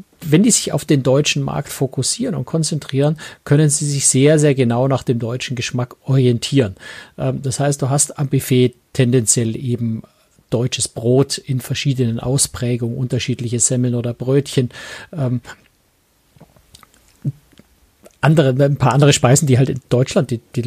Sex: male